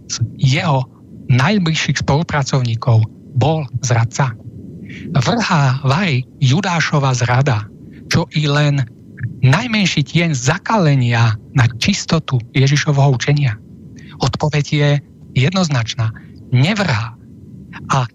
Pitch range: 130-170 Hz